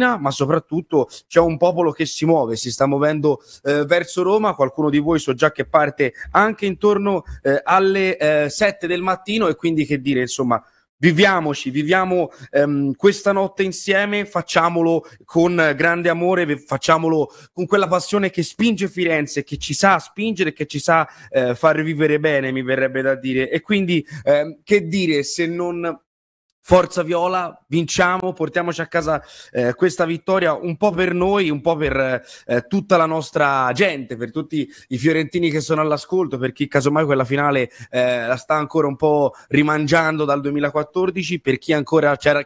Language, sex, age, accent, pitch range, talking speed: Italian, male, 30-49, native, 145-175 Hz, 170 wpm